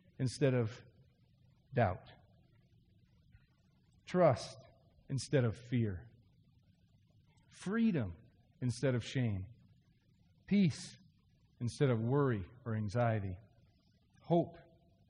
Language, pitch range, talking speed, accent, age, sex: English, 110-135 Hz, 70 wpm, American, 40-59, male